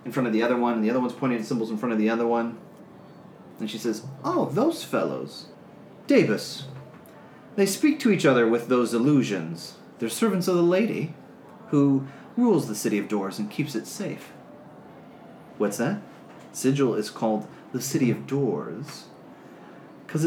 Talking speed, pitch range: 175 wpm, 125-190 Hz